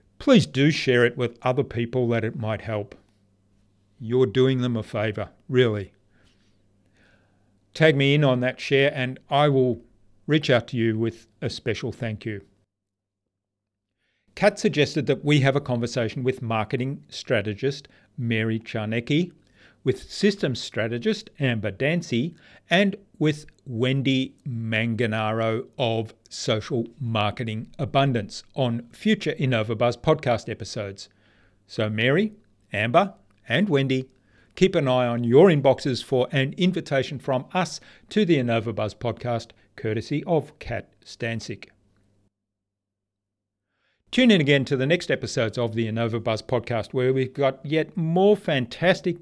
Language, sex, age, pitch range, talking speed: English, male, 50-69, 105-140 Hz, 130 wpm